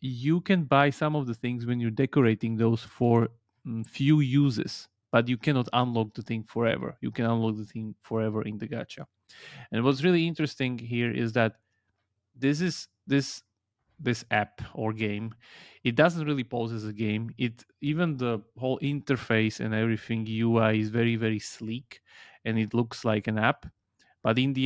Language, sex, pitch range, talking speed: English, male, 110-125 Hz, 175 wpm